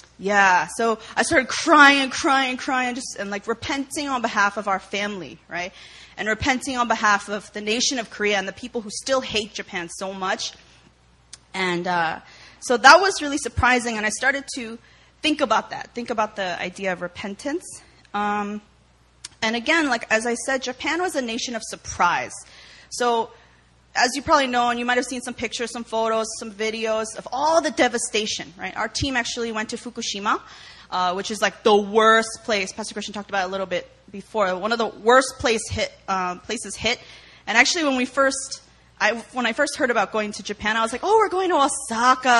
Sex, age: female, 20-39